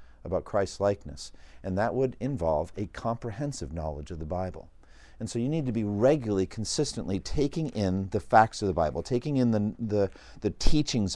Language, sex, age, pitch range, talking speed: English, male, 50-69, 95-135 Hz, 185 wpm